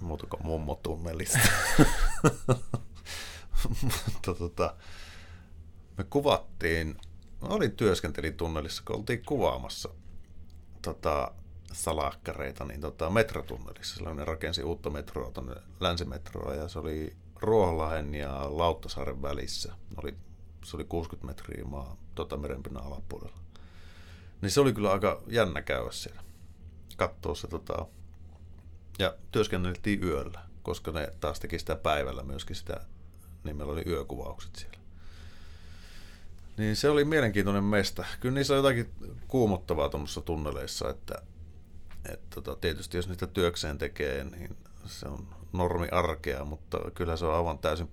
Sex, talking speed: male, 110 wpm